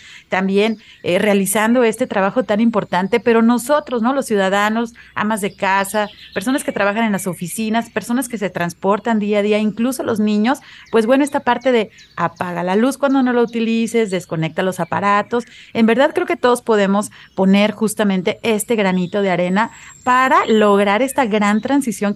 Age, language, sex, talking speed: 30-49, Spanish, female, 170 wpm